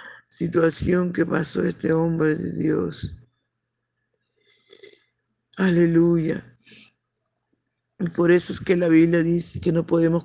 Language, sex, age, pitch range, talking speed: Spanish, male, 50-69, 160-180 Hz, 110 wpm